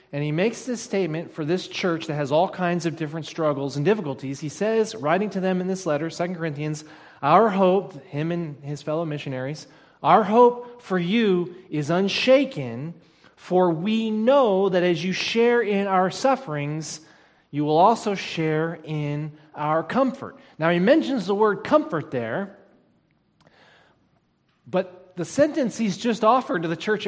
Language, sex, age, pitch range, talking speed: English, male, 30-49, 155-220 Hz, 160 wpm